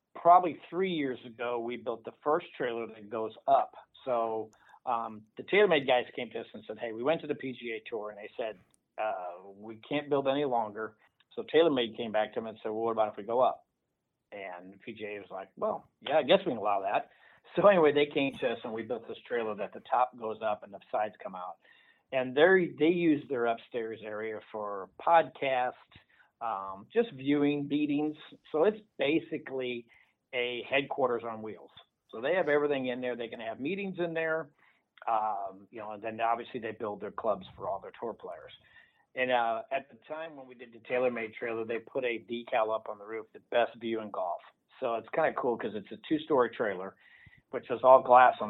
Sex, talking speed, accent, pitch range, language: male, 210 wpm, American, 110-140 Hz, English